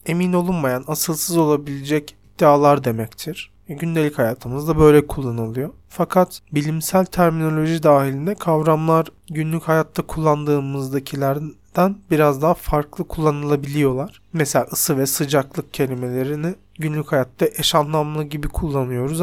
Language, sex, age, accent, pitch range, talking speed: Turkish, male, 40-59, native, 135-165 Hz, 105 wpm